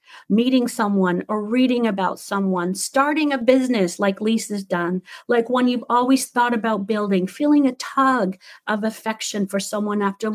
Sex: female